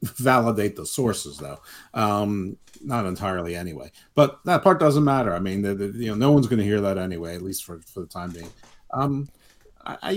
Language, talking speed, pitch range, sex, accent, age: English, 205 wpm, 100-130 Hz, male, American, 50-69